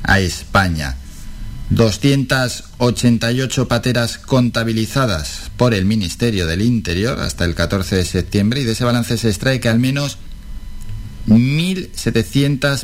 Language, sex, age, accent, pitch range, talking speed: Spanish, male, 50-69, Spanish, 100-120 Hz, 115 wpm